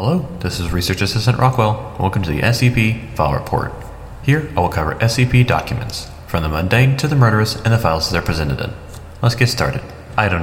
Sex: male